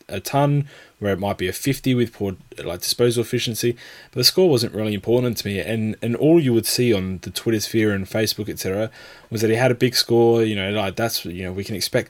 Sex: male